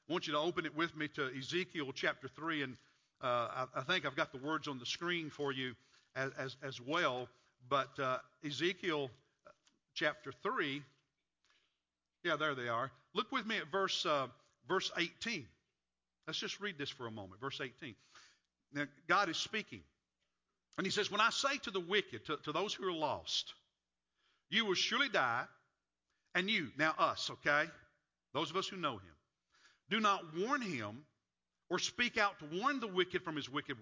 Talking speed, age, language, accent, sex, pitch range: 185 wpm, 50-69, English, American, male, 130-185 Hz